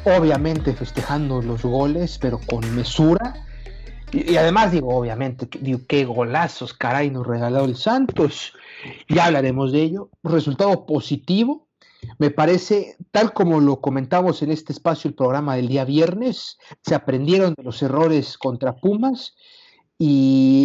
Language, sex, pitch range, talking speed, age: Spanish, male, 130-165 Hz, 135 wpm, 50-69